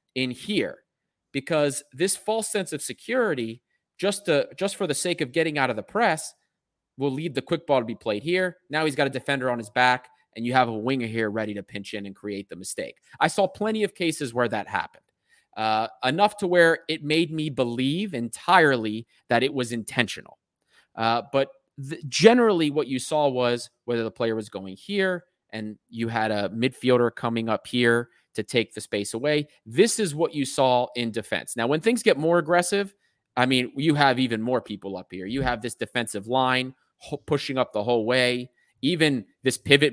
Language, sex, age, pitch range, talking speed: English, male, 30-49, 115-150 Hz, 205 wpm